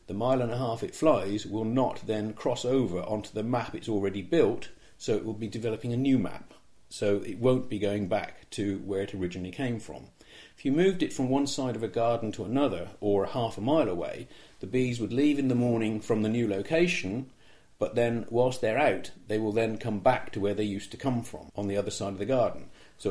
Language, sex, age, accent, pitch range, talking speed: English, male, 50-69, British, 100-120 Hz, 240 wpm